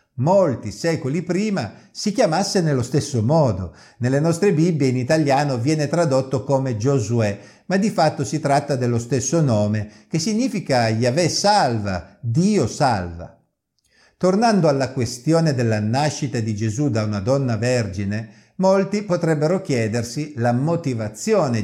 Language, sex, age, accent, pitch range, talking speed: Italian, male, 50-69, native, 115-165 Hz, 130 wpm